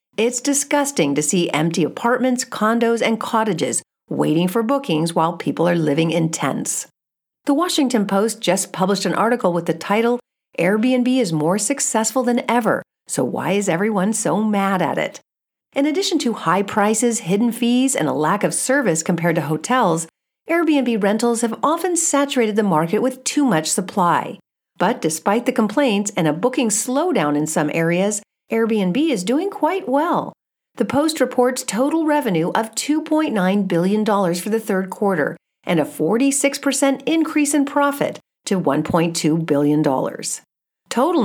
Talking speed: 155 wpm